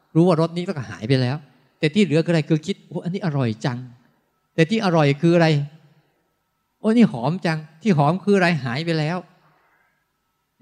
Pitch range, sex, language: 125-165 Hz, male, Thai